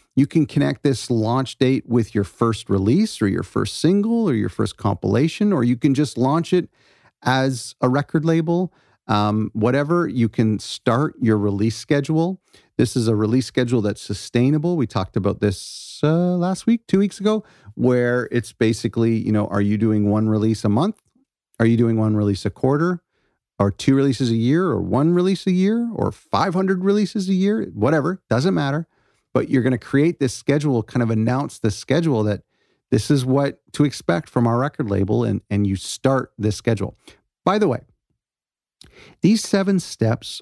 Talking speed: 185 wpm